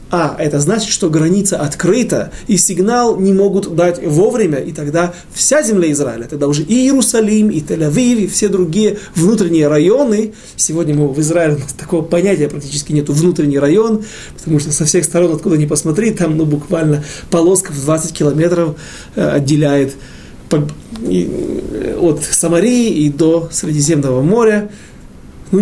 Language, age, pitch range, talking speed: Russian, 30-49, 150-195 Hz, 140 wpm